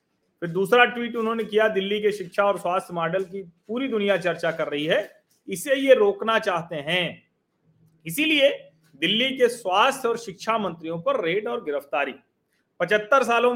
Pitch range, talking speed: 150-205 Hz, 165 wpm